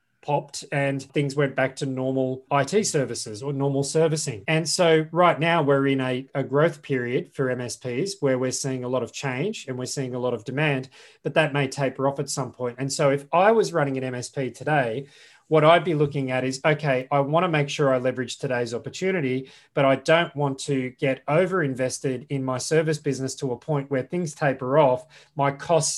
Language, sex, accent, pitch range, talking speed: English, male, Australian, 130-150 Hz, 210 wpm